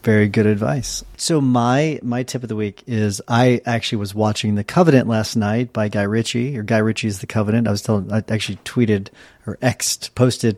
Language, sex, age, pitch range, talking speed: English, male, 40-59, 110-125 Hz, 205 wpm